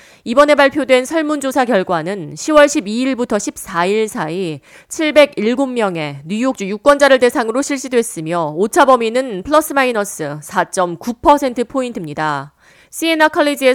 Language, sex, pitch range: Korean, female, 185-270 Hz